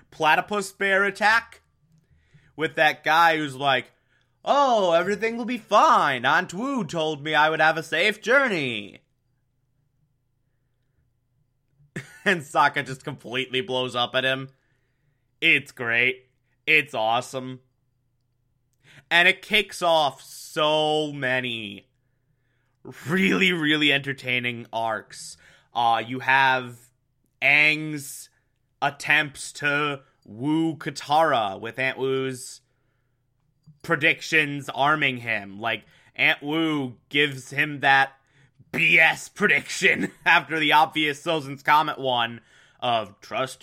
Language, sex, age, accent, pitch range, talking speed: English, male, 20-39, American, 125-150 Hz, 105 wpm